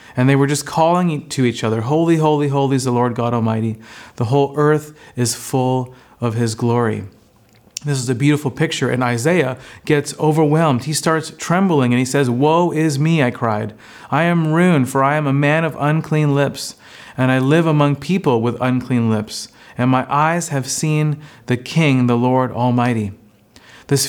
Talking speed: 185 wpm